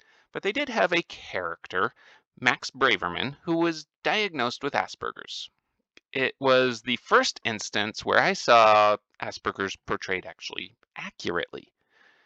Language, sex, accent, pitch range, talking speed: English, male, American, 110-175 Hz, 120 wpm